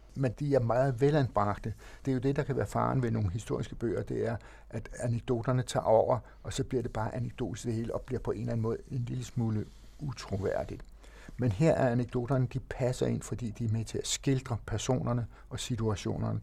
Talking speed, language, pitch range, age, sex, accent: 210 wpm, Danish, 105-130 Hz, 60-79, male, native